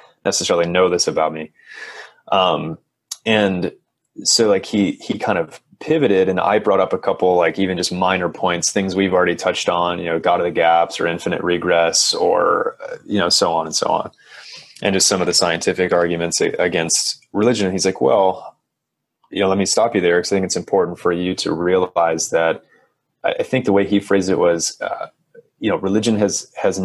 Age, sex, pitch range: 30-49, male, 85-100 Hz